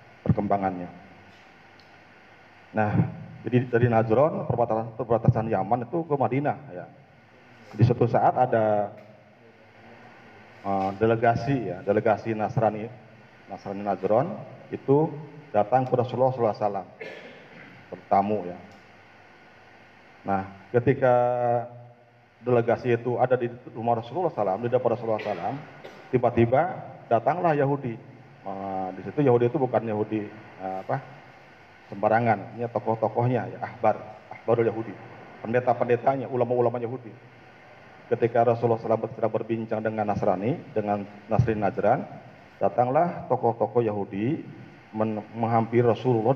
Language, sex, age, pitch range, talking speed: Malay, male, 40-59, 110-130 Hz, 100 wpm